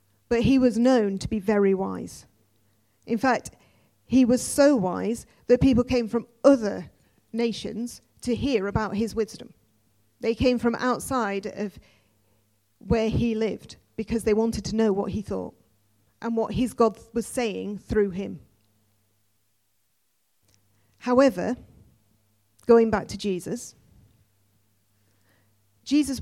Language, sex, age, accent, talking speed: English, female, 40-59, British, 125 wpm